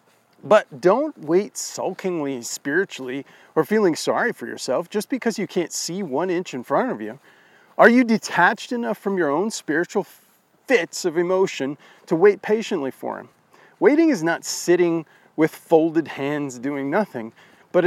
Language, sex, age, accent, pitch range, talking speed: English, male, 40-59, American, 165-245 Hz, 160 wpm